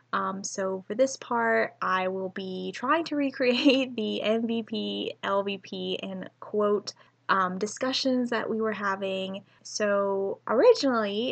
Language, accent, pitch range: English, American, 190-235 Hz